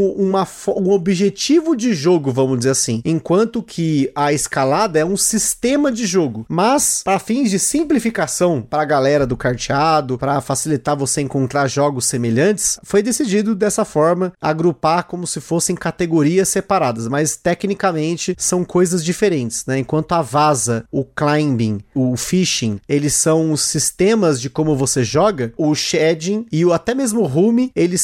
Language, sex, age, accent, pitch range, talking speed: Portuguese, male, 30-49, Brazilian, 150-195 Hz, 155 wpm